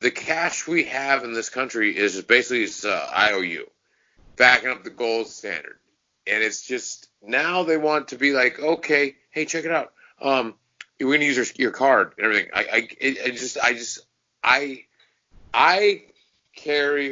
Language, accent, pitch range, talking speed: English, American, 105-135 Hz, 170 wpm